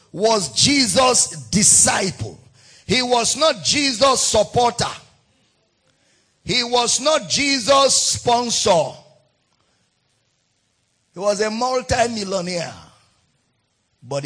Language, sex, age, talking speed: English, male, 50-69, 75 wpm